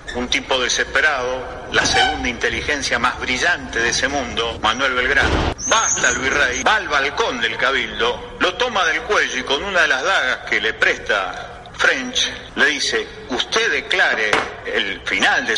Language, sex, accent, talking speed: Spanish, male, Argentinian, 160 wpm